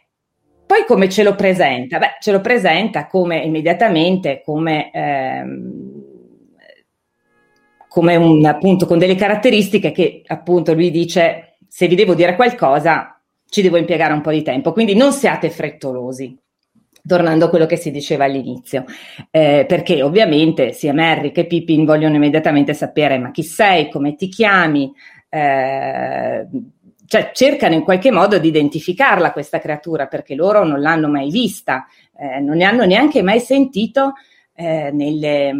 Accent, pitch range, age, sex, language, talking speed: native, 150-190 Hz, 30-49, female, Italian, 145 wpm